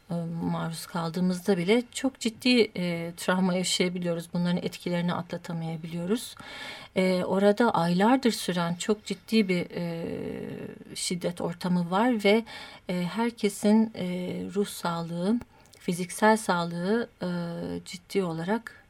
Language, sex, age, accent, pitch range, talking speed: Turkish, female, 40-59, native, 175-220 Hz, 105 wpm